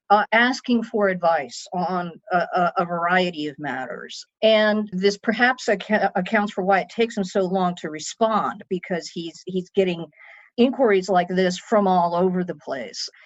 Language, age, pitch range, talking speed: English, 50-69, 180-225 Hz, 165 wpm